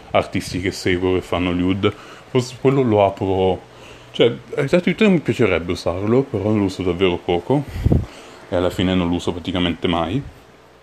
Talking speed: 160 wpm